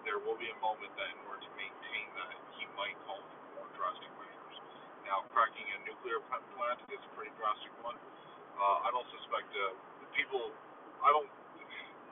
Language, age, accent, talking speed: English, 40-59, American, 180 wpm